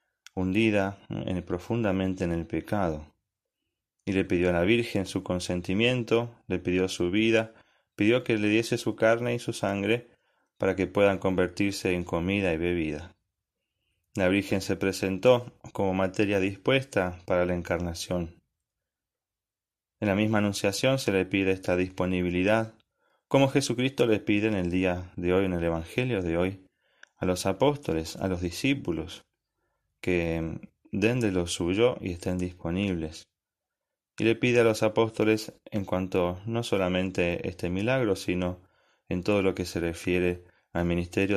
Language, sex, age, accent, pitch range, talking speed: Spanish, male, 30-49, Argentinian, 90-110 Hz, 150 wpm